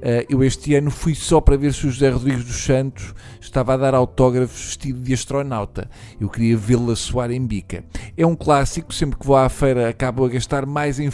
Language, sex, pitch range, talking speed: Portuguese, male, 120-145 Hz, 220 wpm